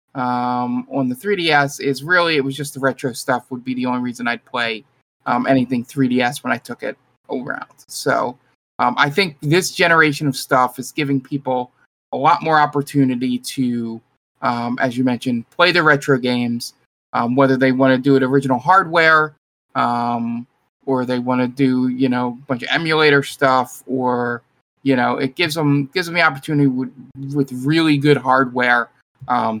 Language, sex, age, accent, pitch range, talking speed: English, male, 20-39, American, 125-140 Hz, 180 wpm